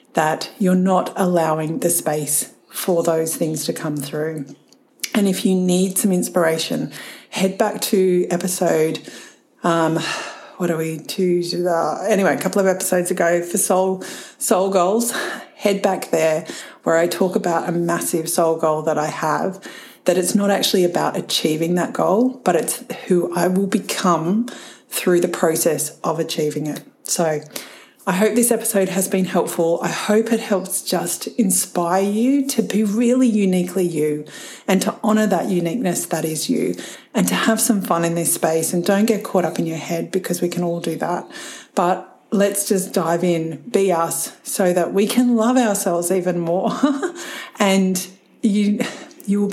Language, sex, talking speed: English, female, 170 wpm